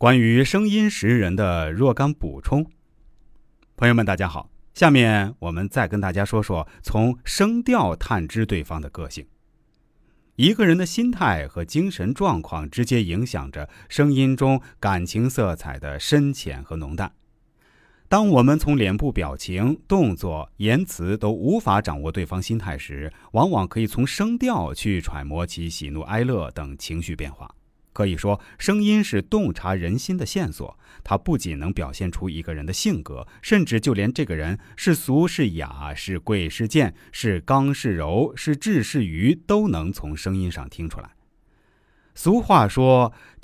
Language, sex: Chinese, male